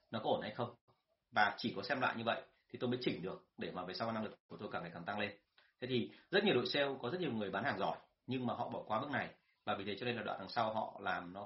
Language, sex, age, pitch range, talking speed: Vietnamese, male, 30-49, 110-130 Hz, 325 wpm